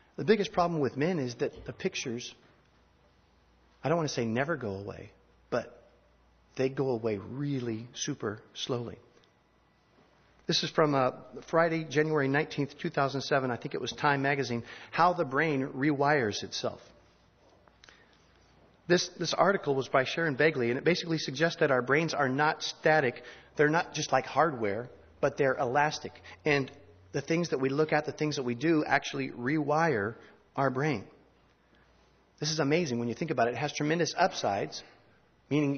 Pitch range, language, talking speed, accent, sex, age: 120-155 Hz, English, 165 wpm, American, male, 40-59